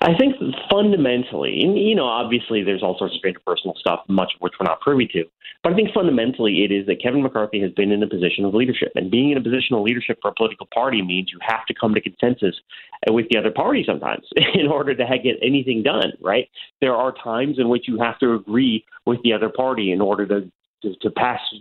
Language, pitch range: English, 100-130 Hz